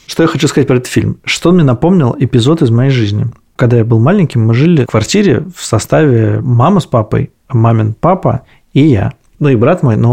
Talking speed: 220 wpm